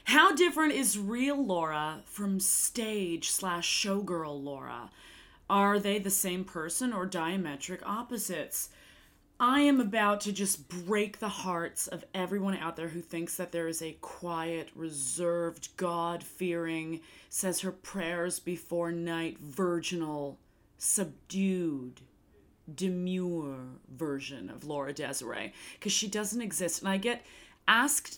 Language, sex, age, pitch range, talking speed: English, female, 30-49, 170-230 Hz, 115 wpm